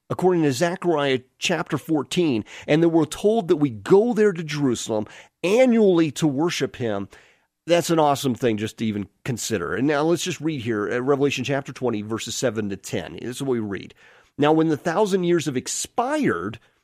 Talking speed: 185 wpm